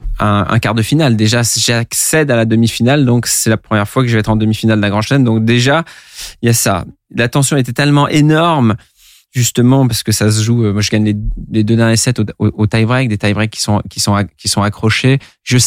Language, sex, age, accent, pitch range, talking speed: French, male, 20-39, French, 105-130 Hz, 235 wpm